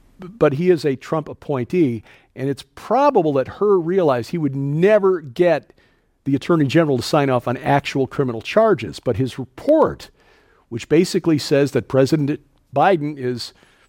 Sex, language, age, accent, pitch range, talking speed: male, English, 50-69, American, 120-155 Hz, 155 wpm